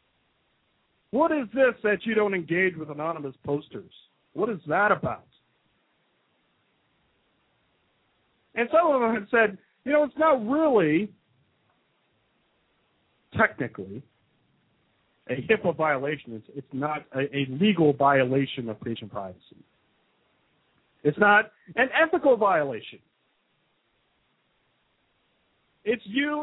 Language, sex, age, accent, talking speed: English, male, 50-69, American, 105 wpm